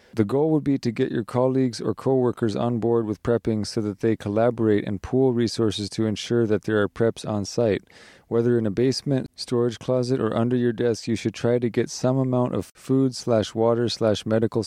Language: English